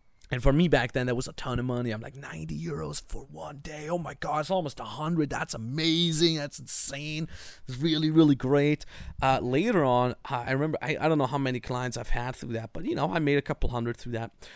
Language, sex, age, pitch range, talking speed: English, male, 30-49, 125-160 Hz, 240 wpm